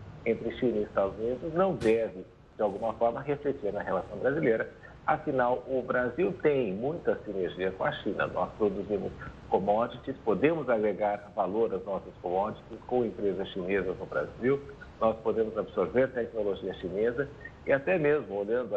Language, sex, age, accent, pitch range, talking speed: Portuguese, male, 60-79, Brazilian, 105-130 Hz, 145 wpm